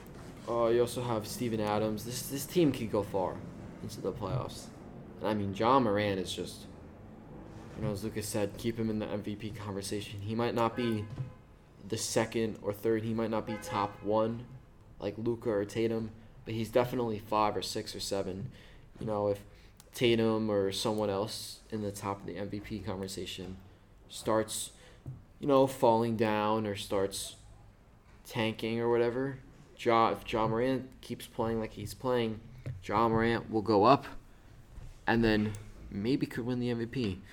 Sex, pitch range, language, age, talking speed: male, 100-115 Hz, English, 20-39, 170 wpm